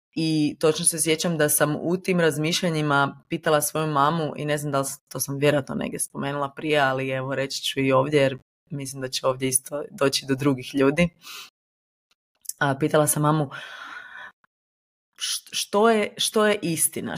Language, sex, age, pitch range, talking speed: Croatian, female, 20-39, 140-165 Hz, 170 wpm